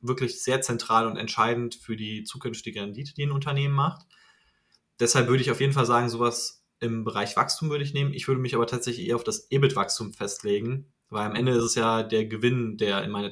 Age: 20-39